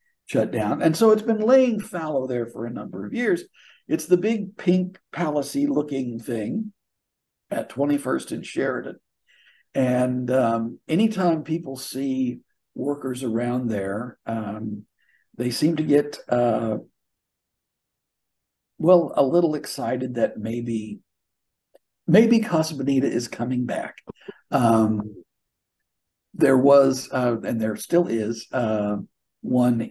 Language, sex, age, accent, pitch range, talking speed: English, male, 60-79, American, 115-160 Hz, 120 wpm